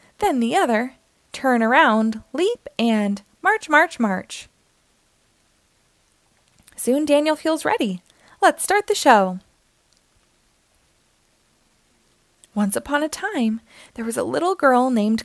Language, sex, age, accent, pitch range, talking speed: English, female, 20-39, American, 215-315 Hz, 110 wpm